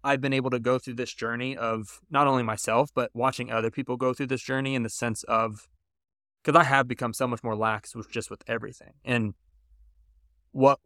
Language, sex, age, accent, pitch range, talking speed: English, male, 20-39, American, 115-145 Hz, 210 wpm